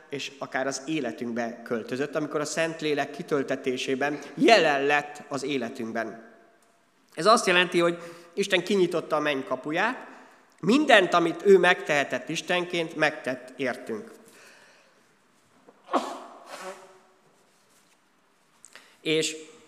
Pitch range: 145-190 Hz